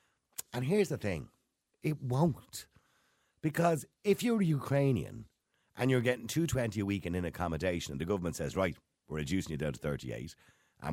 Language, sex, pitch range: English, male, 90-140 Hz